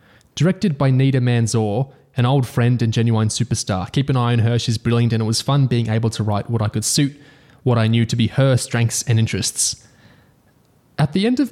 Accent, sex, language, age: Australian, male, English, 20-39